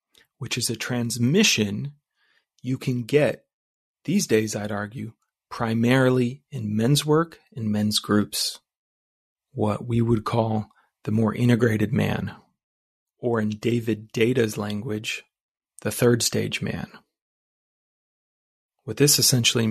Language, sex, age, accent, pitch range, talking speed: English, male, 30-49, American, 110-130 Hz, 115 wpm